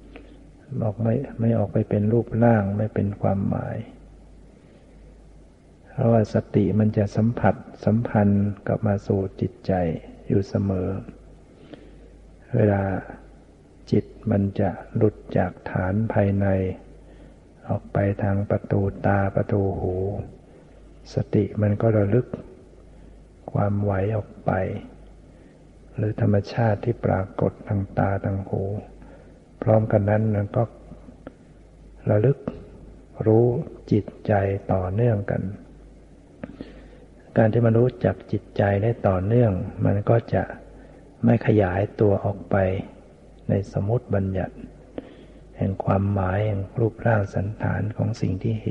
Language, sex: Thai, male